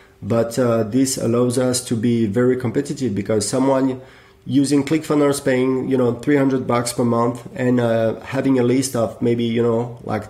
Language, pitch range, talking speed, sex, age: English, 120-150 Hz, 175 wpm, male, 30-49